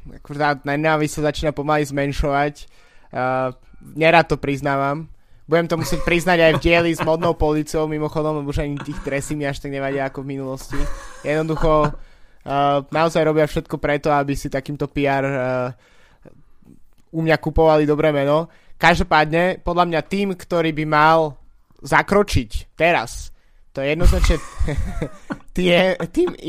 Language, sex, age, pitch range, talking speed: Slovak, male, 20-39, 145-160 Hz, 140 wpm